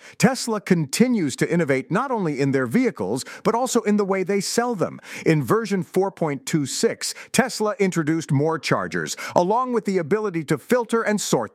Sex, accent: male, American